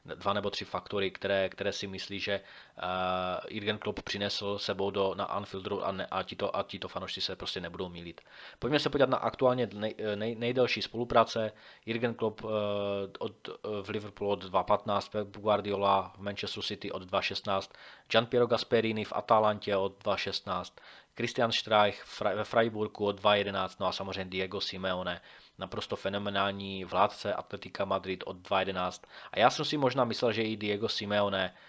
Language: Czech